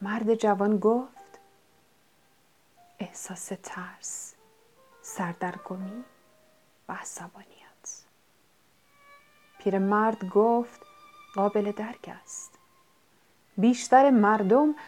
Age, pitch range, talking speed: 30-49, 205-285 Hz, 65 wpm